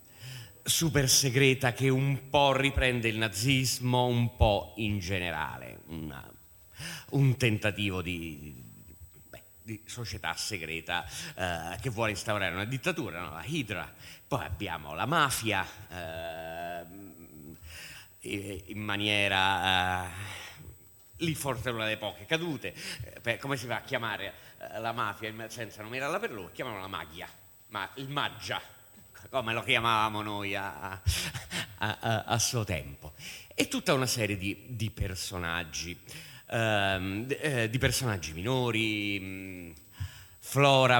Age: 30-49